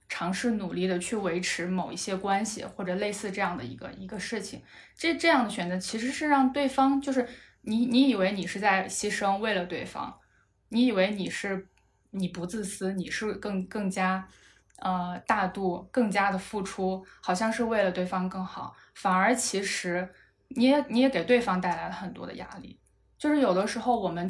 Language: Chinese